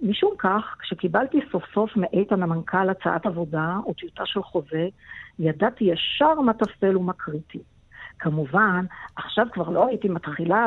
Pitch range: 175-235 Hz